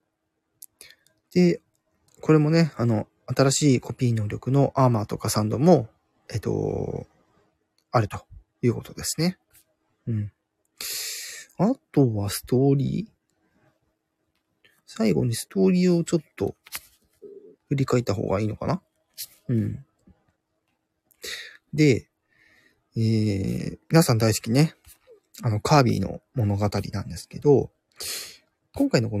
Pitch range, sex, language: 105-150 Hz, male, Japanese